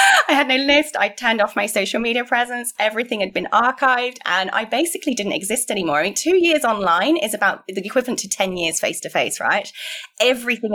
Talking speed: 200 wpm